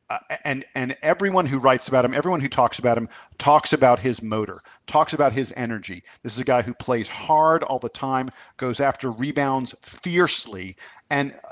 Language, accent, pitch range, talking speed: English, American, 115-140 Hz, 190 wpm